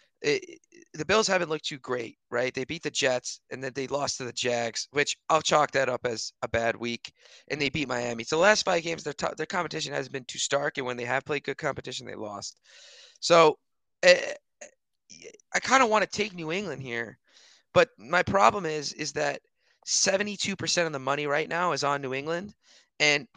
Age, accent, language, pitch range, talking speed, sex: 20-39, American, English, 120-155 Hz, 205 wpm, male